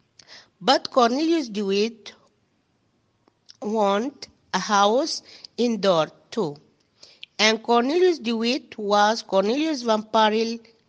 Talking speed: 90 wpm